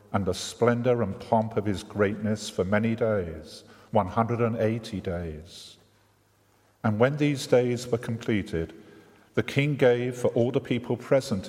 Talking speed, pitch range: 155 wpm, 105-125 Hz